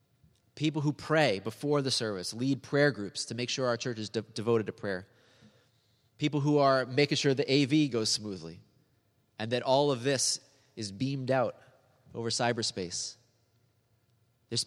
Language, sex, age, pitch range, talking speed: English, male, 30-49, 115-135 Hz, 155 wpm